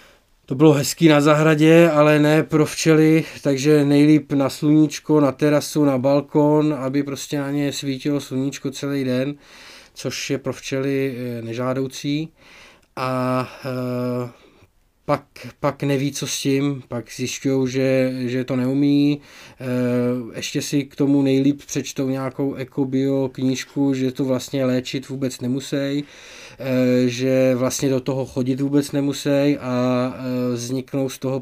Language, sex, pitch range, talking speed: Czech, male, 130-145 Hz, 130 wpm